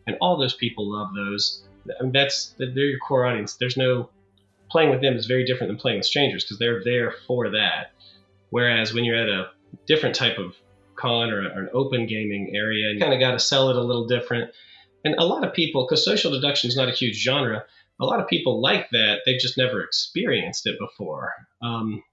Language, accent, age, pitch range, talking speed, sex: English, American, 30-49, 110-130 Hz, 220 wpm, male